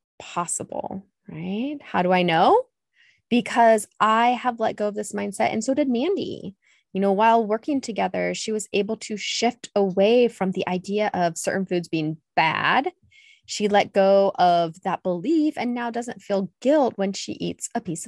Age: 20-39